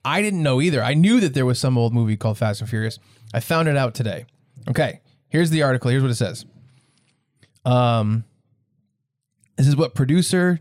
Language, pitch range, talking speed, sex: English, 120-145 Hz, 190 wpm, male